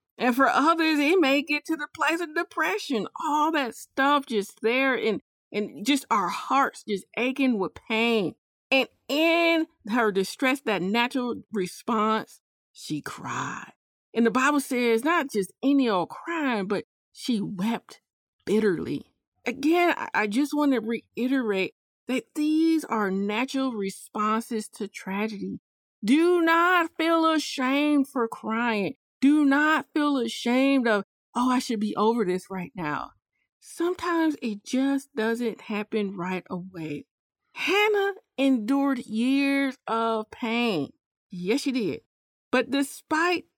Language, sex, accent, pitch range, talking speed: English, female, American, 215-285 Hz, 130 wpm